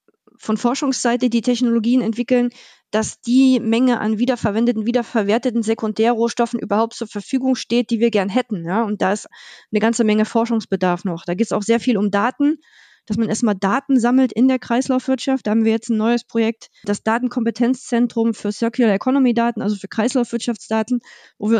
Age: 20-39